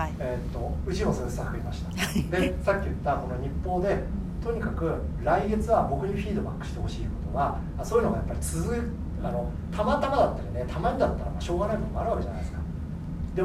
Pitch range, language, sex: 75-85 Hz, Japanese, male